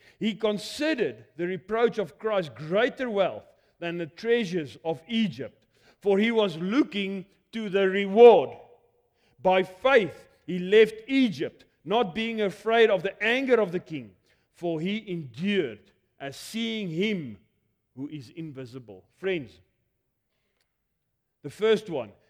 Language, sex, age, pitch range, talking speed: English, male, 40-59, 130-195 Hz, 125 wpm